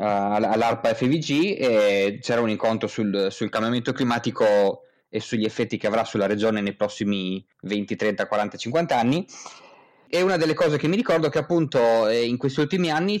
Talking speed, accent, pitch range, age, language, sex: 175 wpm, native, 105-150 Hz, 20-39, Italian, male